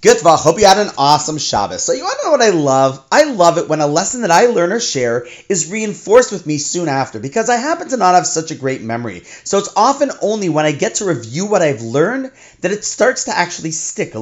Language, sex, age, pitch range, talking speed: English, male, 30-49, 145-220 Hz, 255 wpm